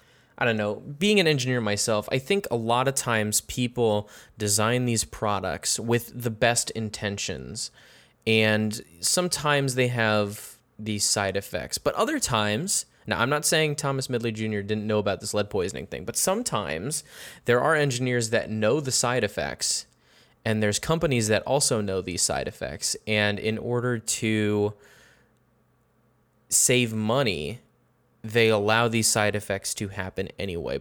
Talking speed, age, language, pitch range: 150 wpm, 20-39, English, 105-130 Hz